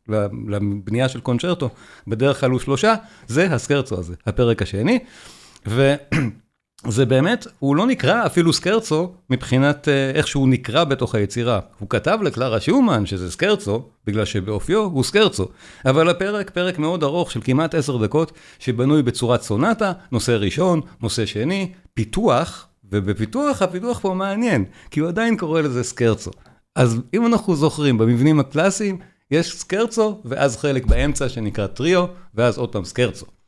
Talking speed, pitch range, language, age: 140 wpm, 115-175 Hz, Hebrew, 50-69